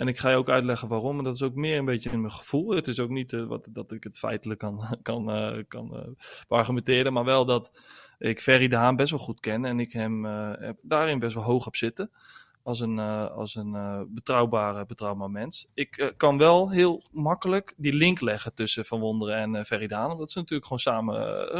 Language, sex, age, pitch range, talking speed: Dutch, male, 20-39, 110-130 Hz, 240 wpm